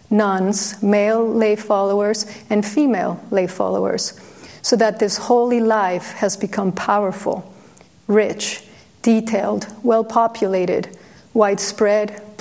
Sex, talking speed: female, 100 wpm